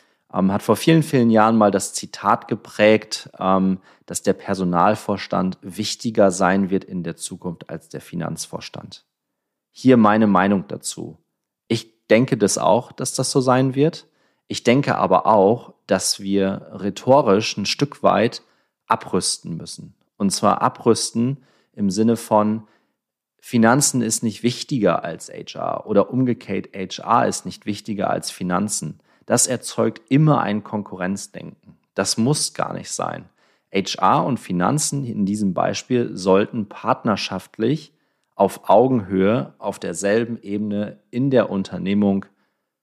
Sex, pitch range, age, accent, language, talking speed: male, 100-120 Hz, 30-49, German, German, 130 wpm